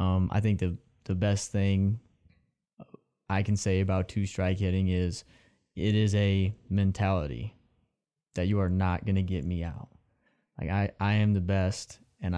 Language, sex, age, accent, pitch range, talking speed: English, male, 20-39, American, 95-105 Hz, 165 wpm